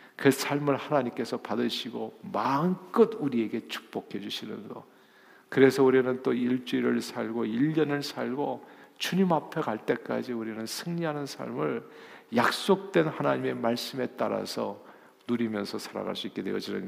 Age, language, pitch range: 50-69, Korean, 115-150 Hz